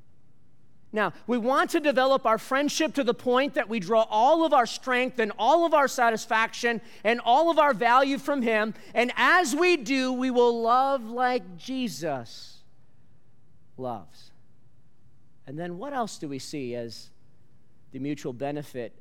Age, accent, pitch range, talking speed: 40-59, American, 140-225 Hz, 160 wpm